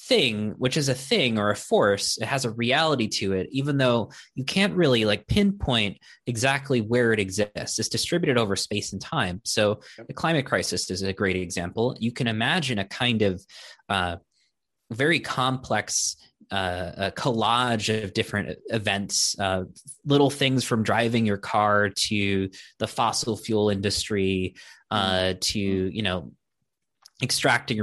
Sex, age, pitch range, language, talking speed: male, 20-39, 95-115 Hz, English, 155 wpm